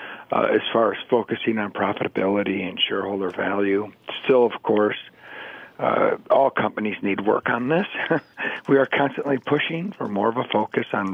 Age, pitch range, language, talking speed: 50-69, 115-140 Hz, English, 160 wpm